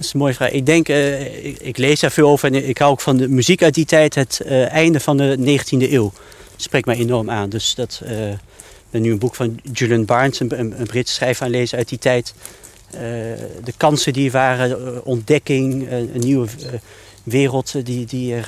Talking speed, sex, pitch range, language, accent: 220 wpm, male, 115-140 Hz, Dutch, Dutch